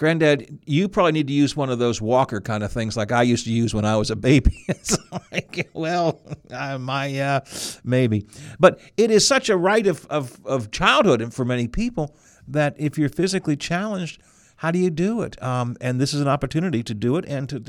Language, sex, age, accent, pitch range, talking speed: English, male, 50-69, American, 115-160 Hz, 225 wpm